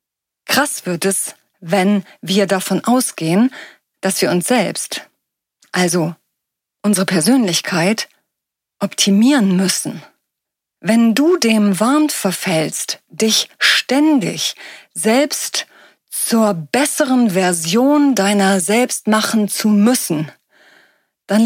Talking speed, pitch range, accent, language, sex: 90 wpm, 190-255 Hz, German, German, female